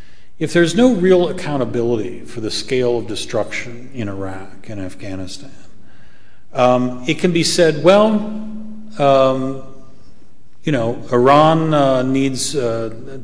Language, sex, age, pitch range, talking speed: English, male, 40-59, 105-135 Hz, 120 wpm